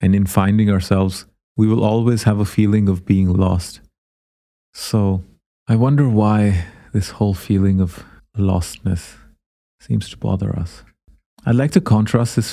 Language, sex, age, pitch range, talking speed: English, male, 30-49, 95-115 Hz, 150 wpm